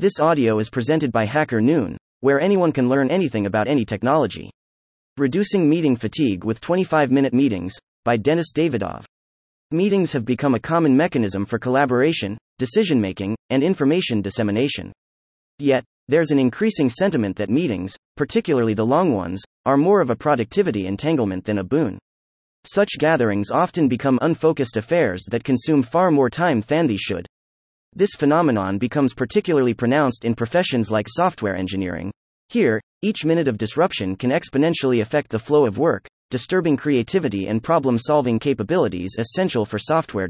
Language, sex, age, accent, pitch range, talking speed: English, male, 30-49, American, 105-155 Hz, 150 wpm